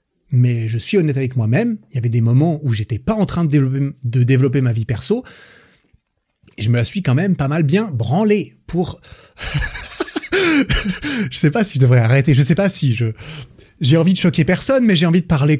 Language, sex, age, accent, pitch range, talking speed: French, male, 30-49, French, 120-160 Hz, 230 wpm